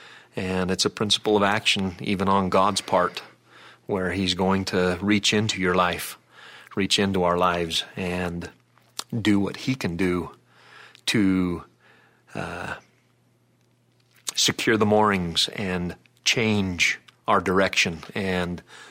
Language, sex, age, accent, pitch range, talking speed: English, male, 40-59, American, 90-105 Hz, 120 wpm